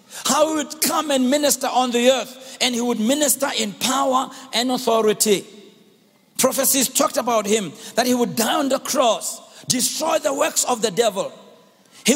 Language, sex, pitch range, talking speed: English, male, 230-300 Hz, 175 wpm